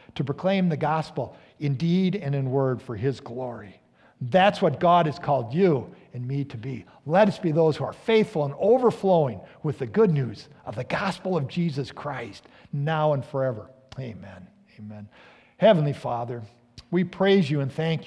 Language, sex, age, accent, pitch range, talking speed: English, male, 50-69, American, 135-190 Hz, 175 wpm